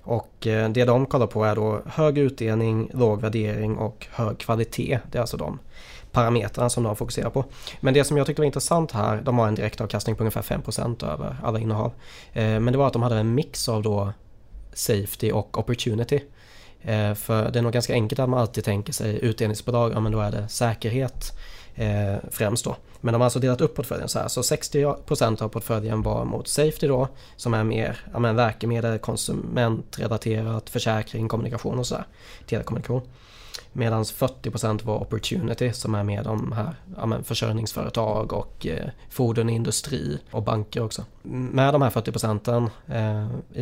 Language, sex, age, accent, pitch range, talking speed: Swedish, male, 20-39, native, 110-125 Hz, 170 wpm